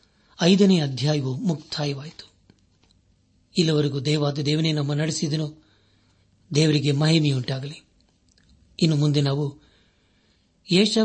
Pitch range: 125-170 Hz